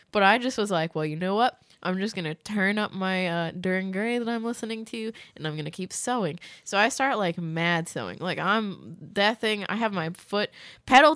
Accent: American